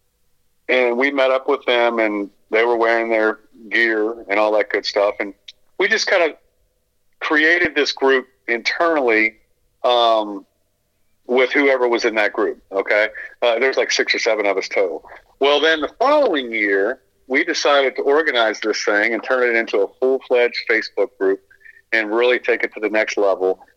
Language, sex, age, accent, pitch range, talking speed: English, male, 40-59, American, 105-130 Hz, 180 wpm